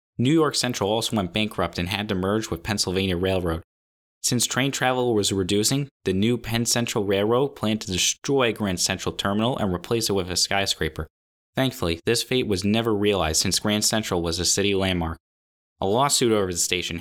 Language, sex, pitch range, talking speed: English, male, 90-115 Hz, 185 wpm